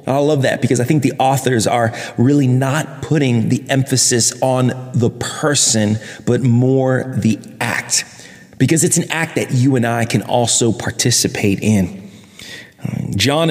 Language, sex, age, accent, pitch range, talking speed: English, male, 30-49, American, 120-155 Hz, 150 wpm